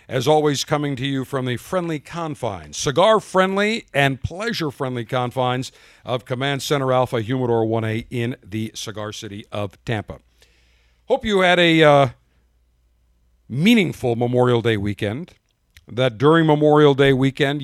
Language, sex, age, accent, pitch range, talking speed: English, male, 50-69, American, 110-145 Hz, 135 wpm